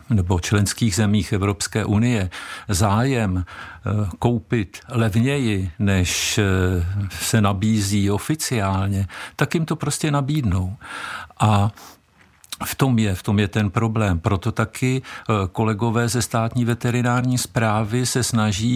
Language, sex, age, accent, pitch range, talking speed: Czech, male, 50-69, native, 105-120 Hz, 105 wpm